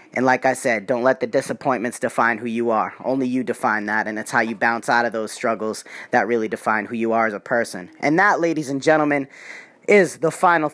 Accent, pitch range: American, 140-185 Hz